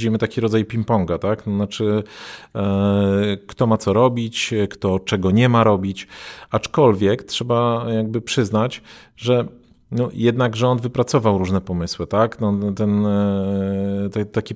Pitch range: 105-120 Hz